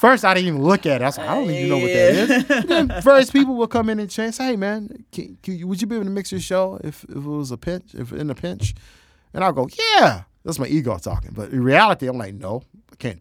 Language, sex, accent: English, male, American